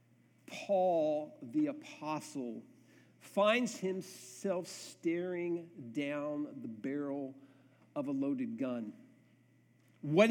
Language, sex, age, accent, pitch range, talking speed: English, male, 50-69, American, 175-255 Hz, 80 wpm